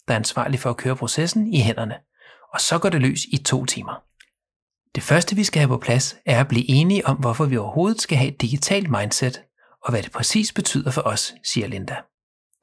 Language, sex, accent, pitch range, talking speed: Danish, male, native, 125-170 Hz, 220 wpm